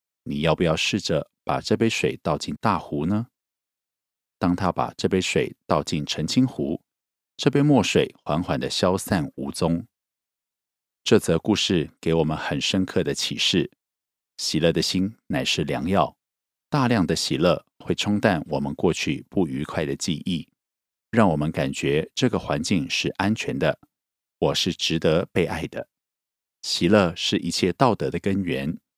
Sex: male